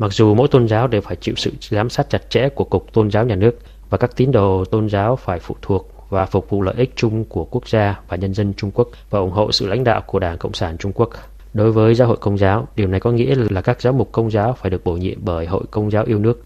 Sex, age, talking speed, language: male, 20-39, 290 wpm, Vietnamese